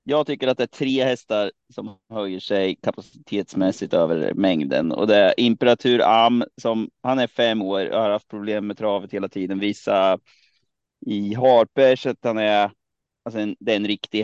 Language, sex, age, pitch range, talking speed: Swedish, male, 20-39, 100-125 Hz, 180 wpm